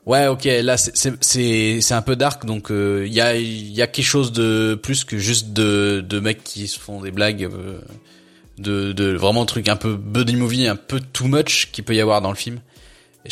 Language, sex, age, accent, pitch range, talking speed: French, male, 20-39, French, 105-130 Hz, 235 wpm